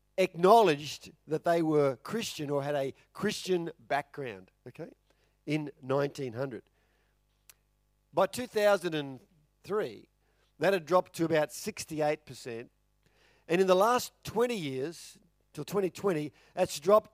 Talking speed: 110 wpm